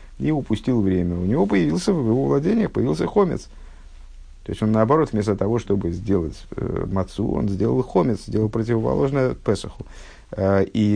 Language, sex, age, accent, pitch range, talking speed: Russian, male, 50-69, native, 95-115 Hz, 150 wpm